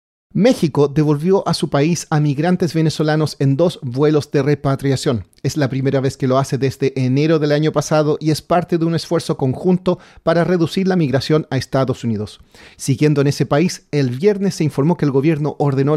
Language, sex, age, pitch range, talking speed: Spanish, male, 40-59, 135-165 Hz, 190 wpm